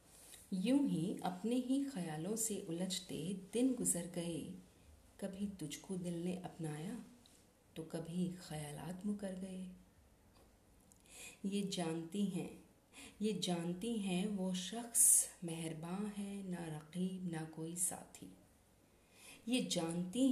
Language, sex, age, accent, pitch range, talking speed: Hindi, female, 50-69, native, 160-205 Hz, 110 wpm